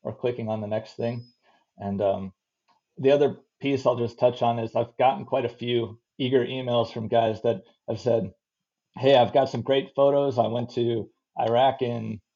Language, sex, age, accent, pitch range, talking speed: English, male, 30-49, American, 115-135 Hz, 190 wpm